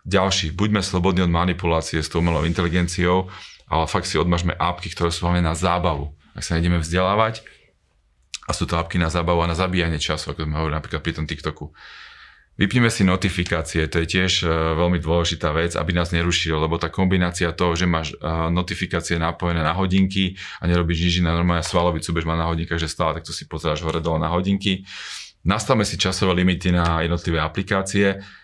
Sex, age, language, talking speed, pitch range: male, 30-49, Slovak, 190 wpm, 80-90 Hz